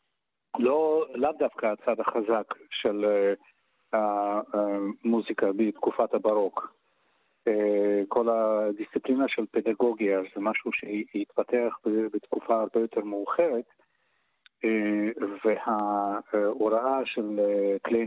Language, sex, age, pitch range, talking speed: Hebrew, male, 40-59, 105-125 Hz, 75 wpm